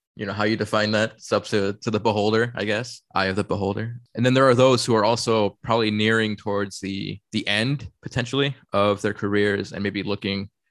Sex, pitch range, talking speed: male, 100-115 Hz, 220 wpm